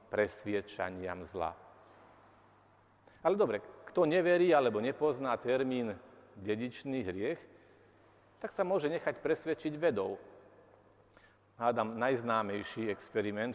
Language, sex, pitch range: Slovak, male, 105-150 Hz